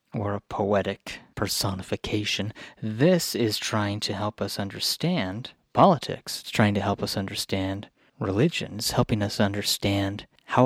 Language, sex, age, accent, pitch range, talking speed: English, male, 30-49, American, 105-130 Hz, 135 wpm